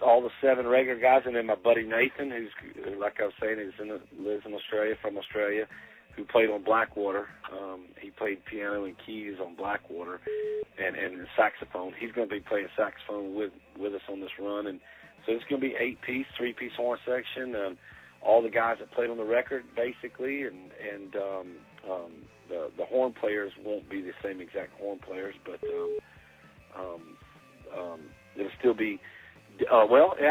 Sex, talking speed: male, 195 wpm